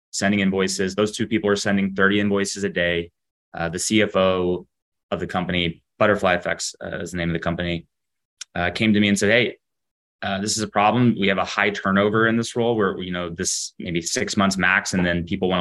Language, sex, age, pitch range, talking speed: English, male, 20-39, 90-105 Hz, 225 wpm